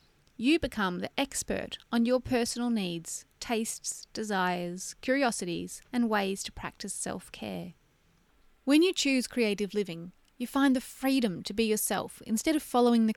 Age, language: 30-49, English